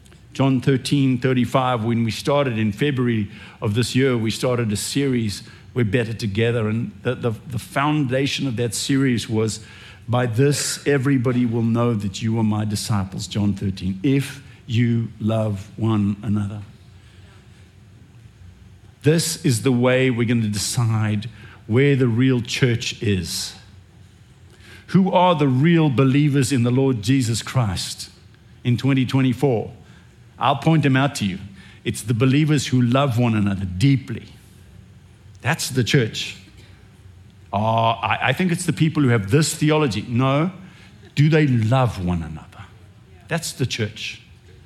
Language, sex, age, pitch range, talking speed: English, male, 50-69, 105-140 Hz, 140 wpm